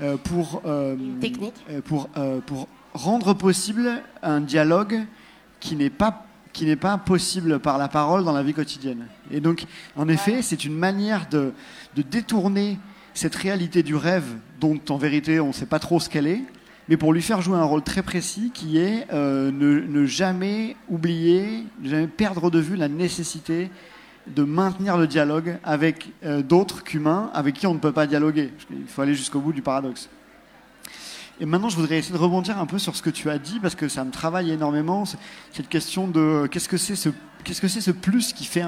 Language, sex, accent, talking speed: French, male, French, 200 wpm